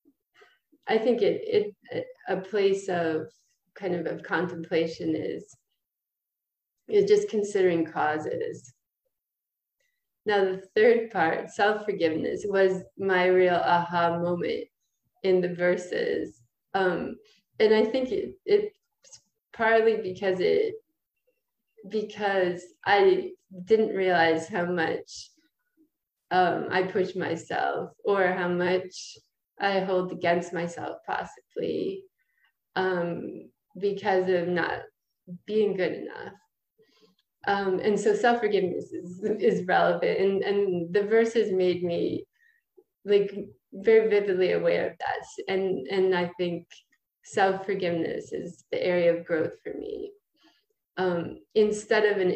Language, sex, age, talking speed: English, female, 30-49, 115 wpm